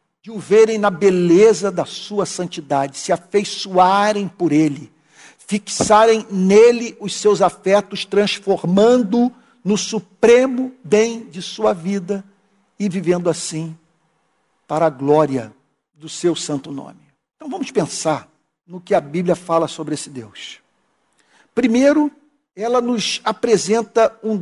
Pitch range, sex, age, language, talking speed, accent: 170-225 Hz, male, 50-69, Portuguese, 125 wpm, Brazilian